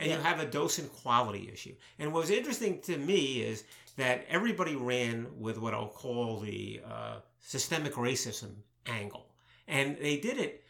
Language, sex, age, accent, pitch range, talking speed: English, male, 50-69, American, 120-170 Hz, 170 wpm